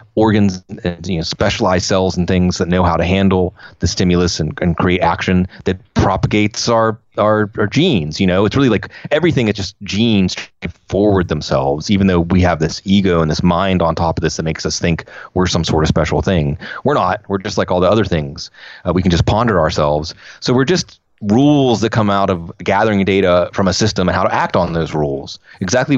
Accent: American